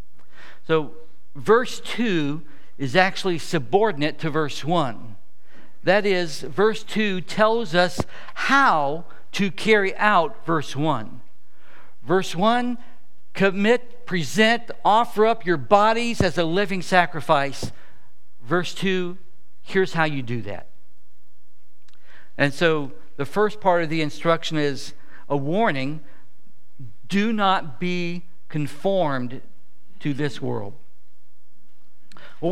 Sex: male